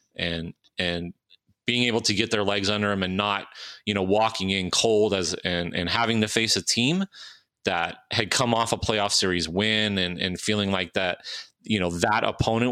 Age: 30-49